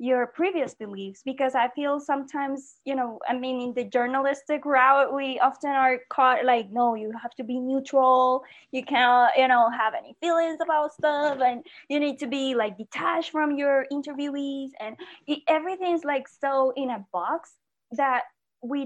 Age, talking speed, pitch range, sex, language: 20-39, 170 wpm, 235-280 Hz, female, English